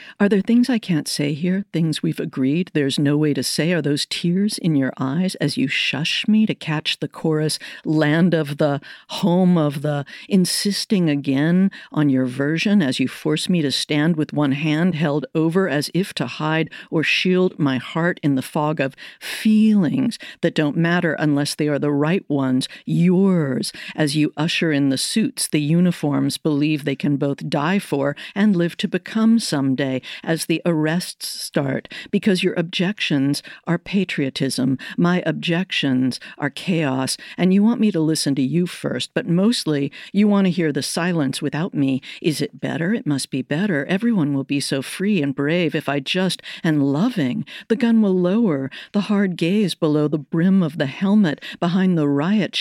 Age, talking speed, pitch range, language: 50-69, 180 wpm, 145-190 Hz, English